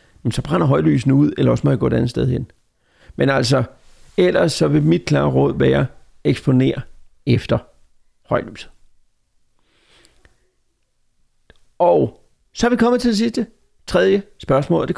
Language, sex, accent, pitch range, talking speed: Danish, male, native, 120-175 Hz, 150 wpm